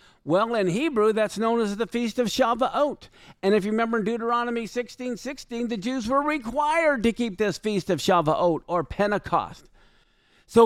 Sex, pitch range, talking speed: male, 205-255 Hz, 175 wpm